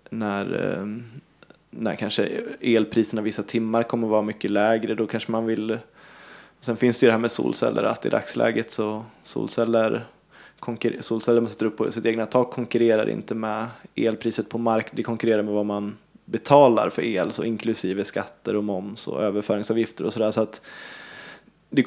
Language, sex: Swedish, male